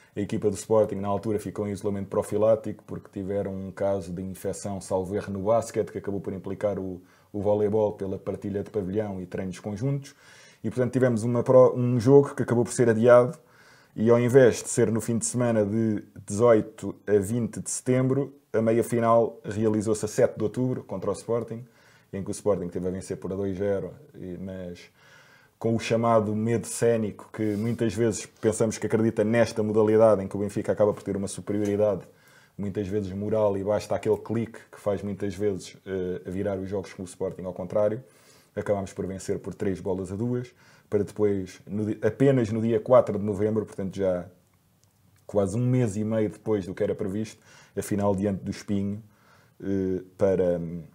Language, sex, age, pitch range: Portuguese, male, 20-39, 100-115 Hz